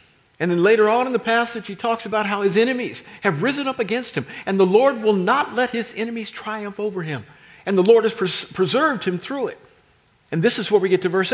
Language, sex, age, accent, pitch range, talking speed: English, male, 50-69, American, 200-285 Hz, 240 wpm